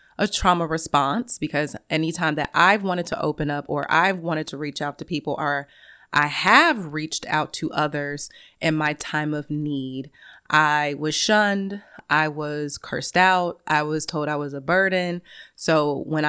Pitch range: 145-165 Hz